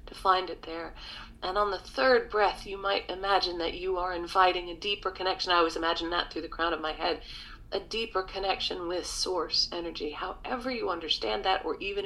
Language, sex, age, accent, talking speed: English, female, 50-69, American, 200 wpm